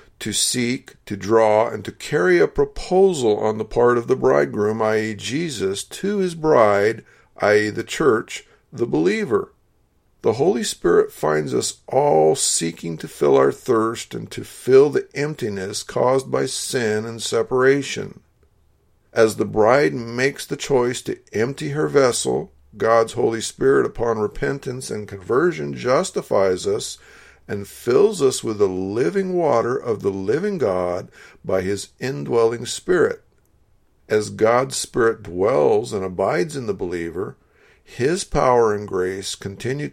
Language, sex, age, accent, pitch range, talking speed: English, male, 50-69, American, 100-140 Hz, 140 wpm